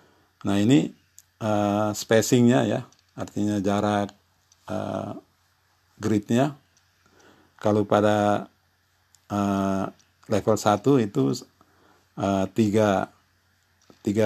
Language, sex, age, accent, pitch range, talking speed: Indonesian, male, 50-69, native, 95-105 Hz, 65 wpm